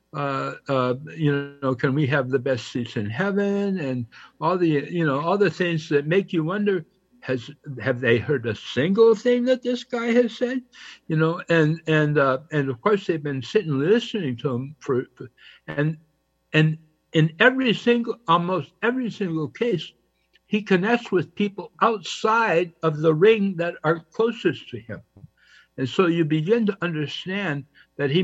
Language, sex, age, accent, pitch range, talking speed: English, male, 60-79, American, 135-185 Hz, 175 wpm